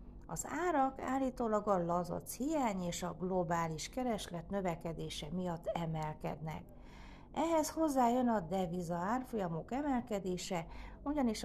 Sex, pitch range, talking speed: female, 170-225 Hz, 100 wpm